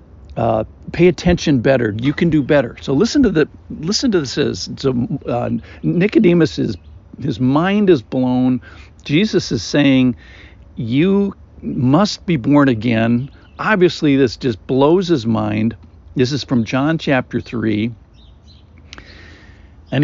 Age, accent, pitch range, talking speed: 60-79, American, 100-145 Hz, 130 wpm